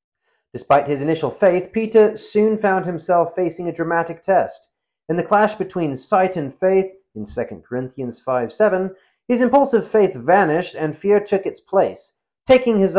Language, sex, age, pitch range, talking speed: English, male, 30-49, 130-190 Hz, 155 wpm